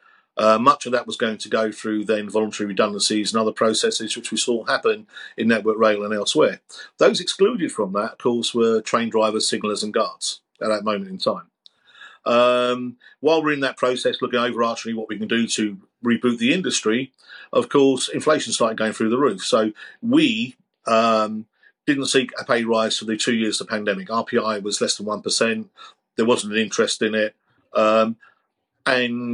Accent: British